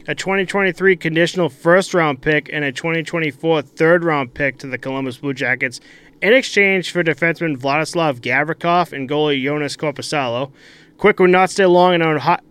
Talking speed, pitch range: 165 wpm, 135-165 Hz